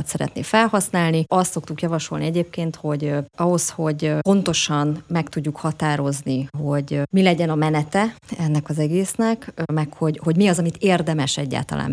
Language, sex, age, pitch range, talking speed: Hungarian, female, 30-49, 145-175 Hz, 145 wpm